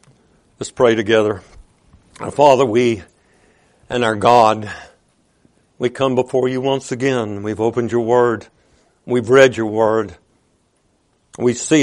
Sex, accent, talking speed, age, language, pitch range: male, American, 125 wpm, 60-79, English, 115-140 Hz